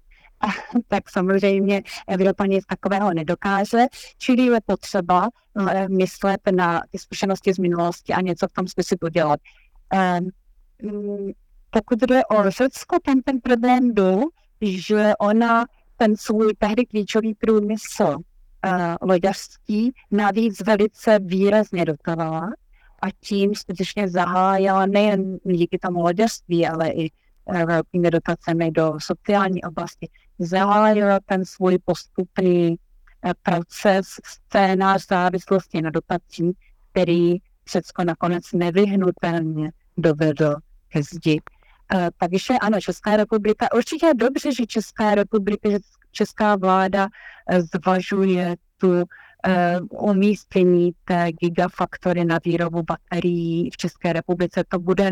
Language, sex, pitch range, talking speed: Czech, female, 175-210 Hz, 110 wpm